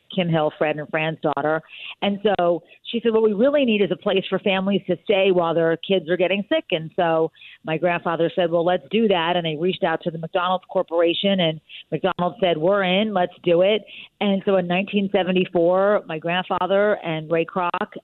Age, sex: 40-59, female